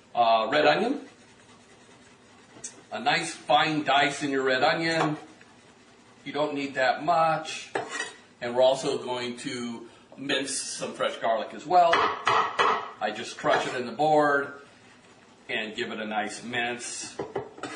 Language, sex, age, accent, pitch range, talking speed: English, male, 40-59, American, 125-155 Hz, 135 wpm